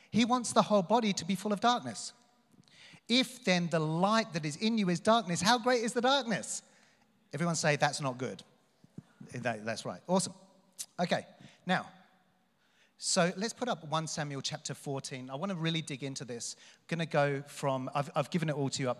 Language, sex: English, male